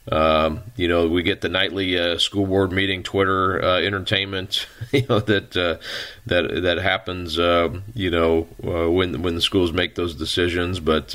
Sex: male